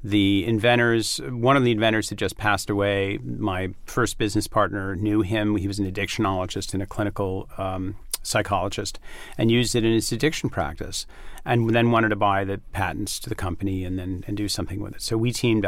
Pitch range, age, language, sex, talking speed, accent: 100-120 Hz, 40-59, English, male, 200 wpm, American